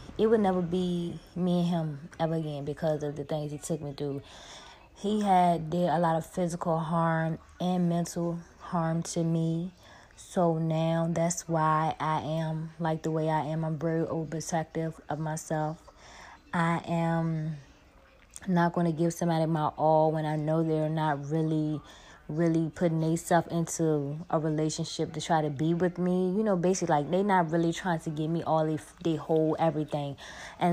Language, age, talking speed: English, 20-39, 180 wpm